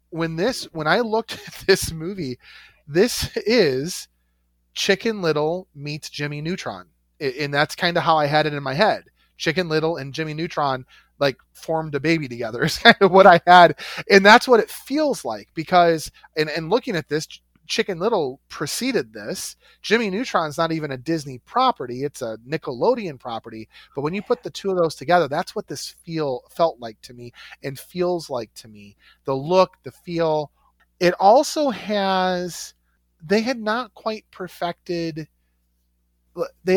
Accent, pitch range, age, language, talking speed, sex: American, 130-185 Hz, 30-49, English, 170 wpm, male